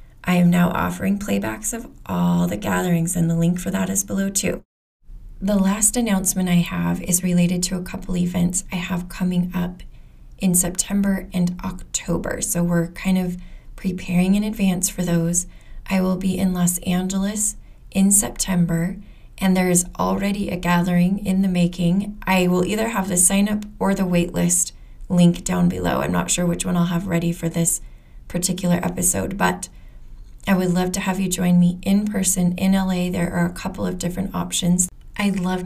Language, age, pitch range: English, 20-39, 175-190 Hz